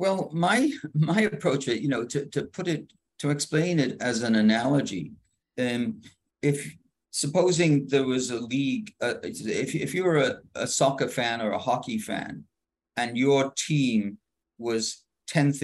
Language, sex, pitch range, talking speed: English, male, 110-145 Hz, 155 wpm